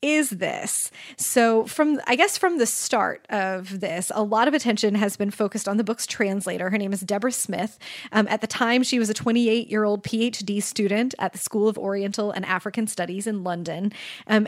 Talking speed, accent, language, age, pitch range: 200 wpm, American, English, 20-39, 205-260 Hz